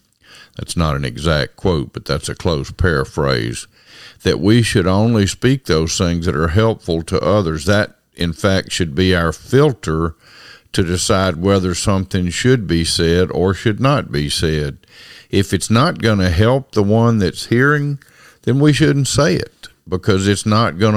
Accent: American